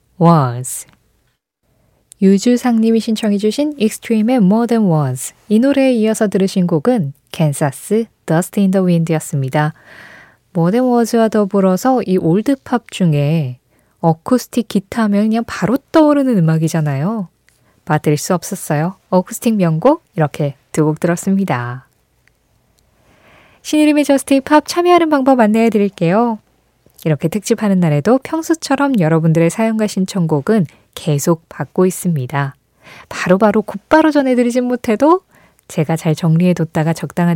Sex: female